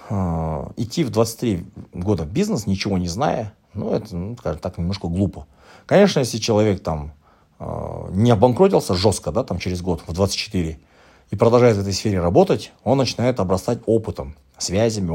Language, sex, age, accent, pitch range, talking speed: Russian, male, 30-49, native, 85-115 Hz, 160 wpm